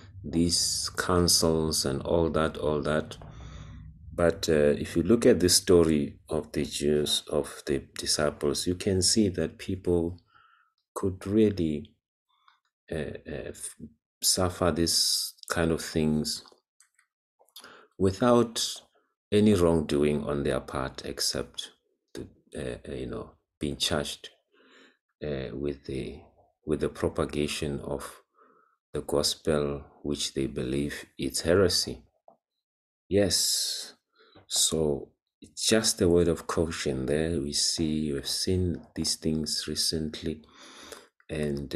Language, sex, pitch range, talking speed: English, male, 75-90 Hz, 115 wpm